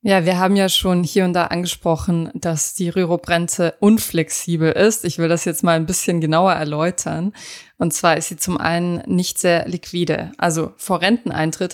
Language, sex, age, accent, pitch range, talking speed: German, female, 20-39, German, 165-200 Hz, 180 wpm